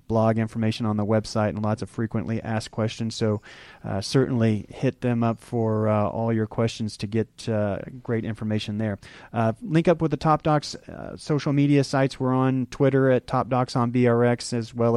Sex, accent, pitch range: male, American, 110-125 Hz